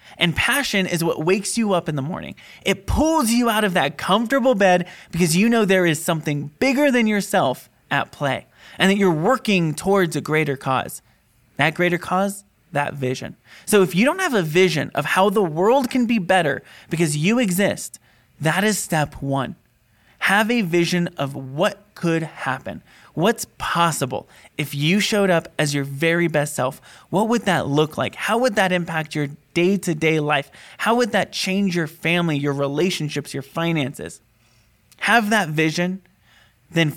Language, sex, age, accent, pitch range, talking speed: English, male, 20-39, American, 145-195 Hz, 175 wpm